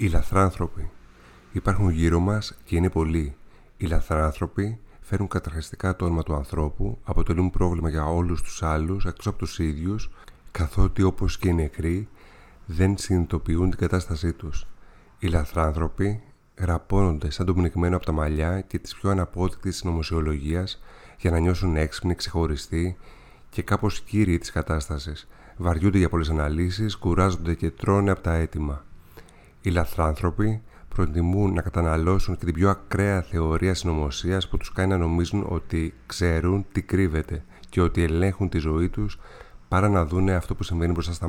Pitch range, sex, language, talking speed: 85-100 Hz, male, Greek, 150 wpm